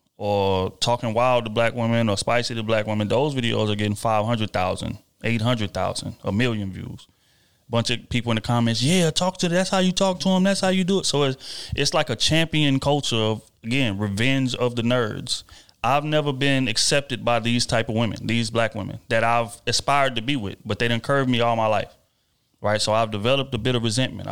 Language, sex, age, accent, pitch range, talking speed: English, male, 30-49, American, 110-130 Hz, 215 wpm